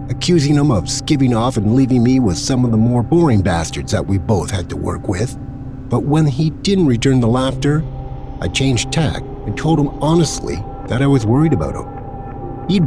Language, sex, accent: English, male, American